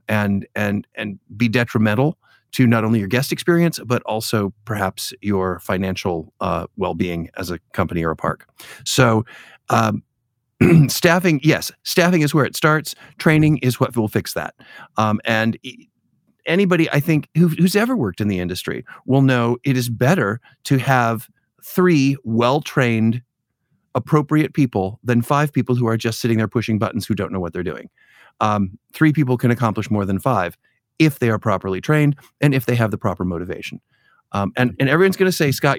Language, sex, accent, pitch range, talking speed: English, male, American, 105-140 Hz, 180 wpm